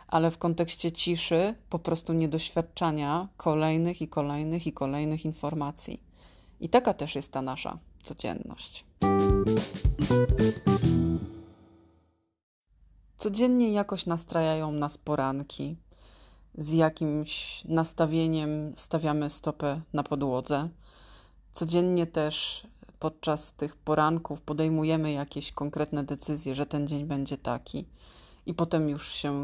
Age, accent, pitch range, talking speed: 30-49, native, 145-165 Hz, 100 wpm